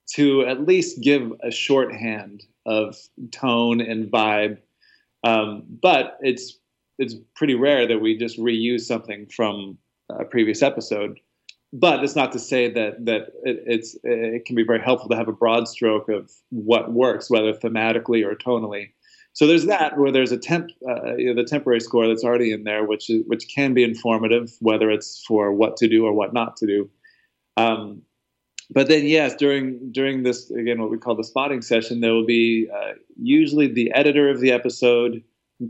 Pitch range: 110-130 Hz